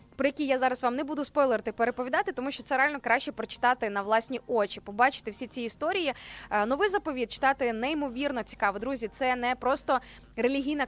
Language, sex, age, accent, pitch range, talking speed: Ukrainian, female, 20-39, native, 230-295 Hz, 175 wpm